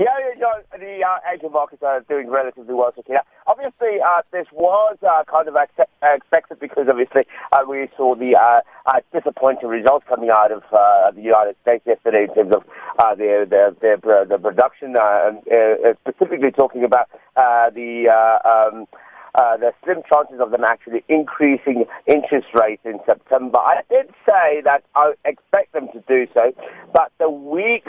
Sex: male